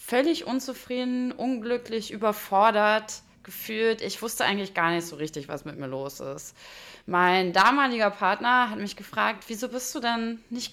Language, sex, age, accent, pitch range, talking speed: German, female, 20-39, German, 175-230 Hz, 155 wpm